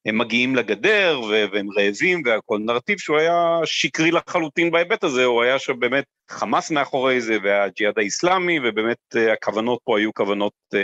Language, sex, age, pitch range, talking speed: Hebrew, male, 40-59, 115-165 Hz, 150 wpm